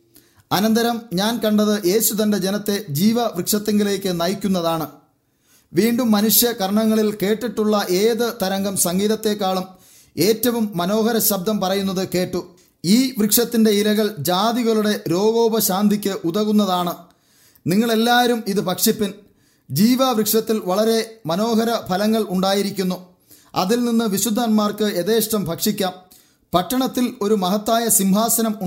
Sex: male